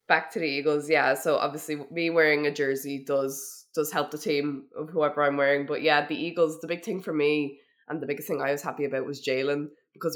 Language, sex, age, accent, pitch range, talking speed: English, female, 20-39, Irish, 140-155 Hz, 235 wpm